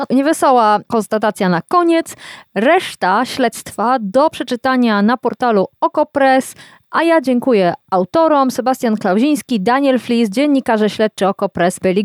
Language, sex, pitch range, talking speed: Polish, female, 185-265 Hz, 115 wpm